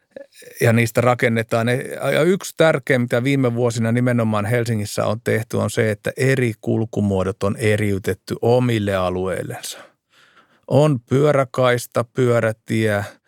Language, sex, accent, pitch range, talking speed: Finnish, male, native, 105-135 Hz, 115 wpm